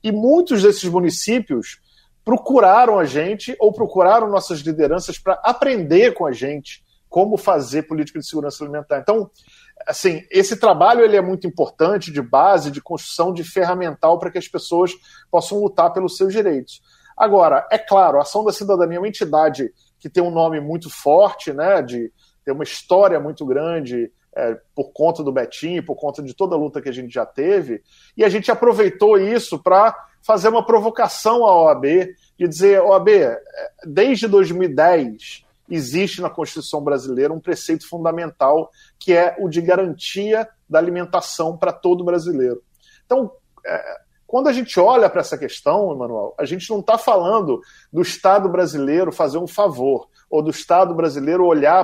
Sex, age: male, 40-59